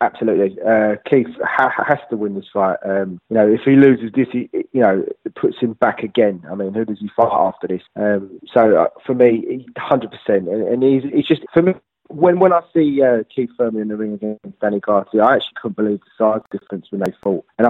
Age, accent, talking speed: 20-39, British, 225 wpm